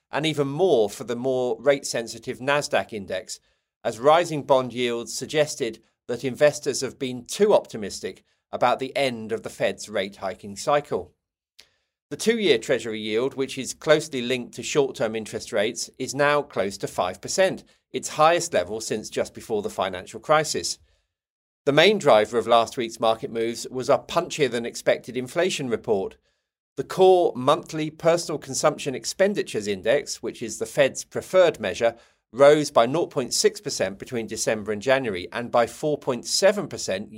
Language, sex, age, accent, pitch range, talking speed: English, male, 40-59, British, 115-150 Hz, 145 wpm